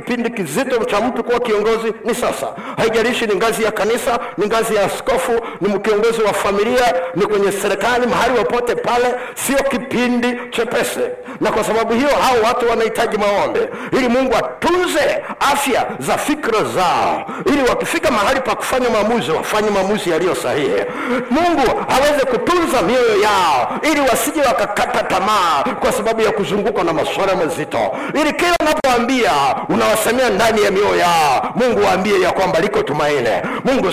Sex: male